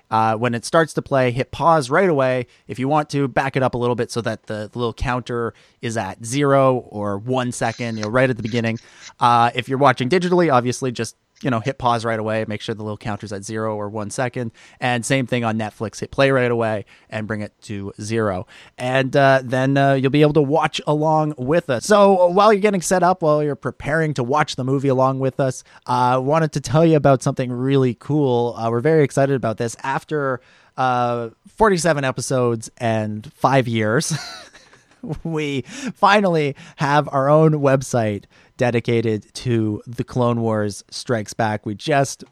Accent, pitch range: American, 110-135 Hz